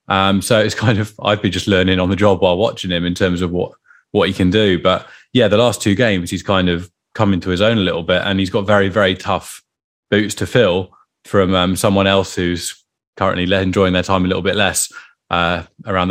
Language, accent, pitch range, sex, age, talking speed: English, British, 90-105 Hz, male, 20-39, 235 wpm